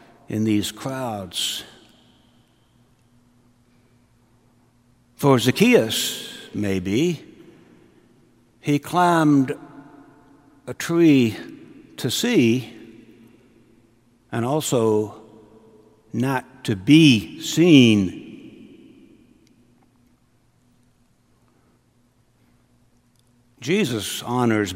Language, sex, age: English, male, 60-79